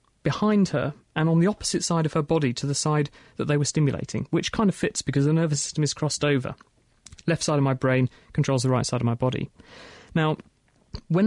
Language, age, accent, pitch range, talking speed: English, 30-49, British, 140-170 Hz, 225 wpm